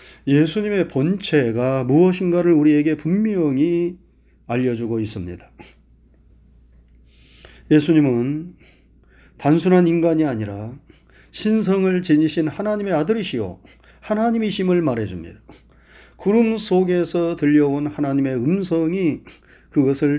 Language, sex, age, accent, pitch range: Korean, male, 40-59, native, 120-175 Hz